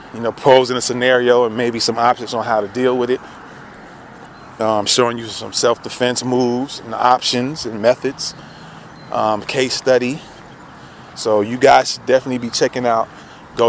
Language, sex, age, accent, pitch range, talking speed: English, male, 30-49, American, 115-135 Hz, 165 wpm